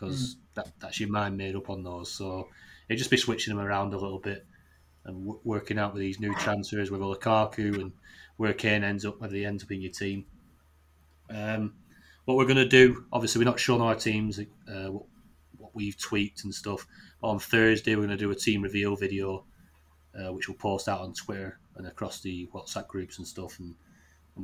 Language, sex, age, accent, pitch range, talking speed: English, male, 30-49, British, 95-110 Hz, 205 wpm